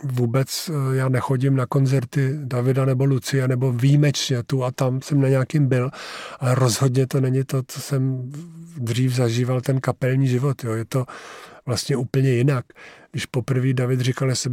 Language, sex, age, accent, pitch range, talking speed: Czech, male, 50-69, native, 125-140 Hz, 165 wpm